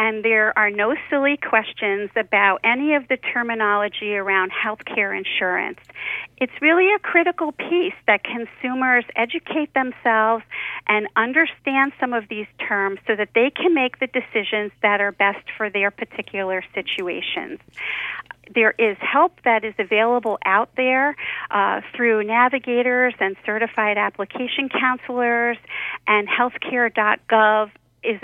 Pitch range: 210-255 Hz